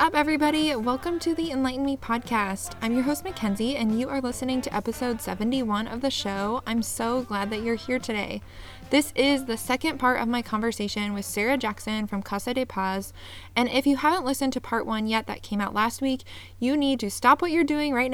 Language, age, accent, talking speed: English, 20-39, American, 220 wpm